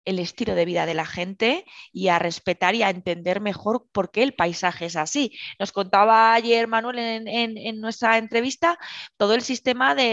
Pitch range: 180-255 Hz